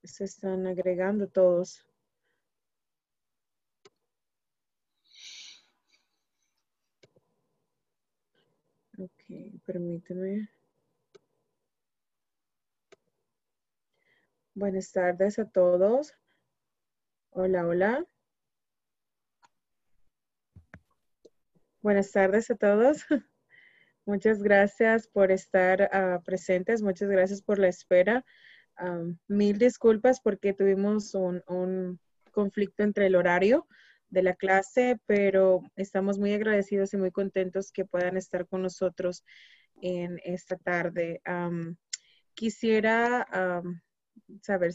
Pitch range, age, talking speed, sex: 180-210 Hz, 20-39, 75 wpm, female